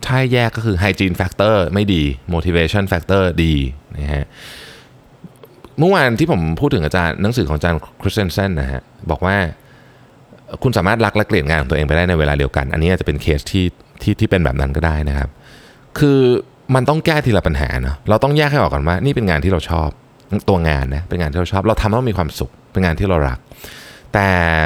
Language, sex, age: Thai, male, 20-39